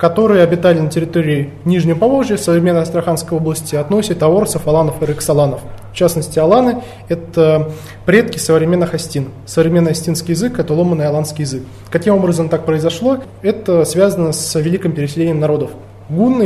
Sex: male